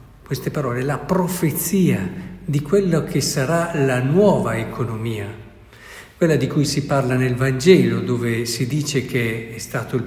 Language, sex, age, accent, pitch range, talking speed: Italian, male, 60-79, native, 120-160 Hz, 150 wpm